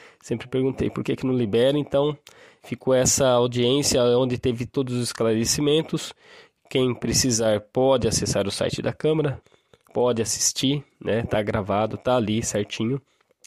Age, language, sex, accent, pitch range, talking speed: 20-39, Portuguese, male, Brazilian, 110-130 Hz, 145 wpm